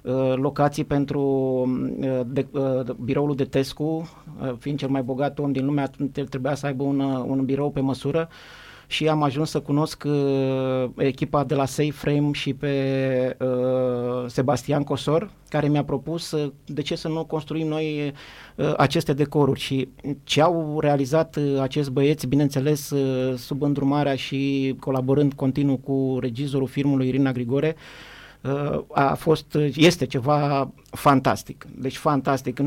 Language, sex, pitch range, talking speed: Romanian, male, 135-150 Hz, 140 wpm